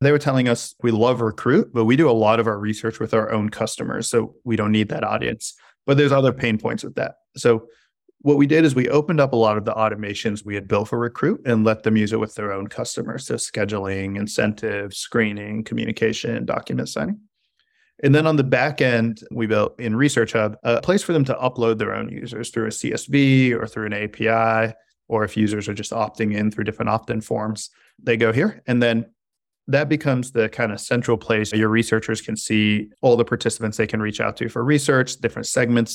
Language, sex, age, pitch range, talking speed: English, male, 20-39, 105-120 Hz, 220 wpm